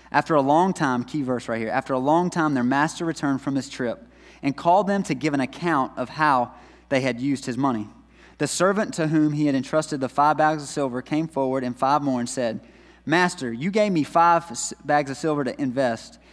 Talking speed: 225 wpm